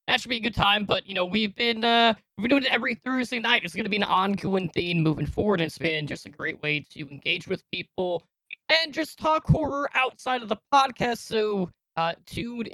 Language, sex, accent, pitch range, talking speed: English, male, American, 165-235 Hz, 235 wpm